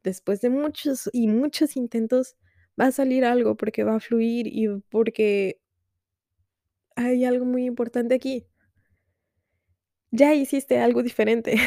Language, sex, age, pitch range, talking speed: Spanish, female, 20-39, 190-235 Hz, 130 wpm